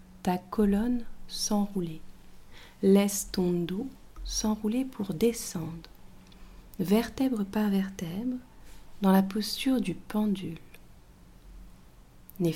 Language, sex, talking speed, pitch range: French, female, 85 wpm, 165-205 Hz